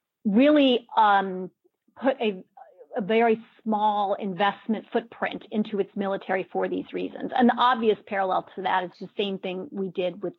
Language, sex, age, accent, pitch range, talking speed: English, female, 40-59, American, 190-245 Hz, 160 wpm